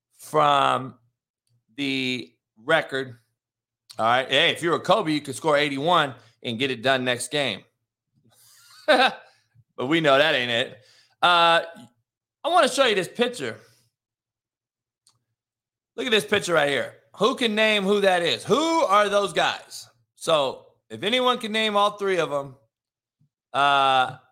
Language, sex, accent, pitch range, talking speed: English, male, American, 115-190 Hz, 150 wpm